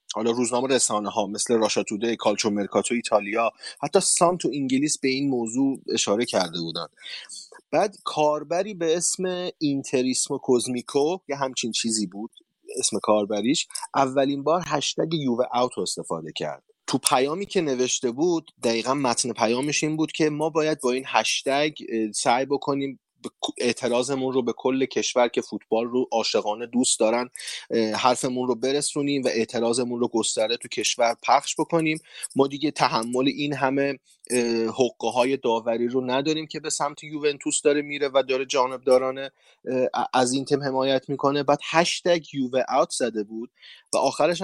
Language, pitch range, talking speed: Persian, 120-155 Hz, 145 wpm